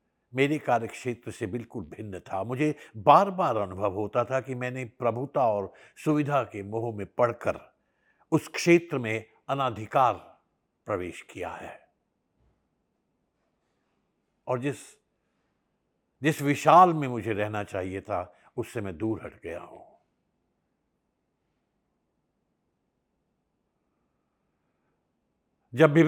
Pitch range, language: 105-140 Hz, Hindi